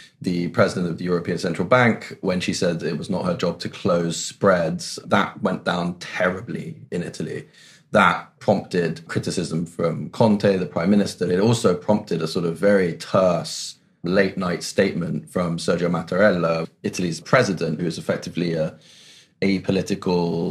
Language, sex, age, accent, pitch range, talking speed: English, male, 20-39, British, 85-105 Hz, 155 wpm